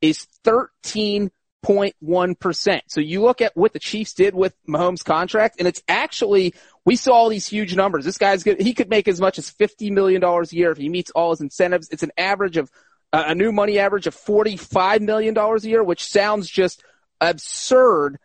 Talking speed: 195 wpm